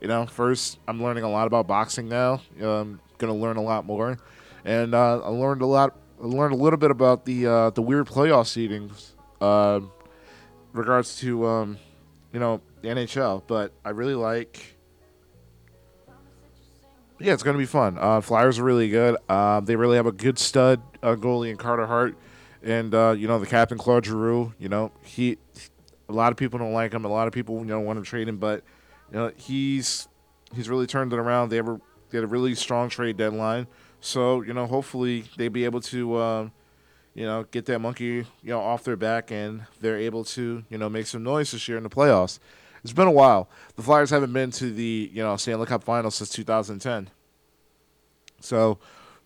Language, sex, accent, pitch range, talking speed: English, male, American, 110-125 Hz, 205 wpm